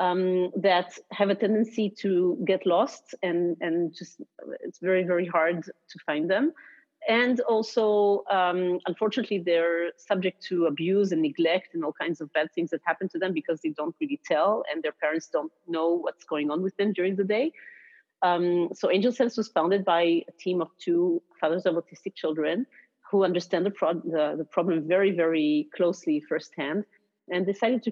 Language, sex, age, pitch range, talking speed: English, female, 40-59, 165-205 Hz, 180 wpm